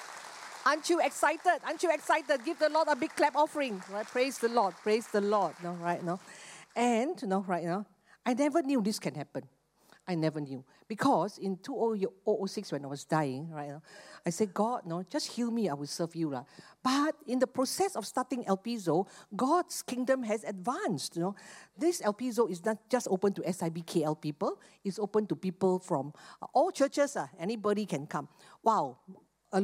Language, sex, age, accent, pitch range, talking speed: English, female, 50-69, Malaysian, 170-250 Hz, 190 wpm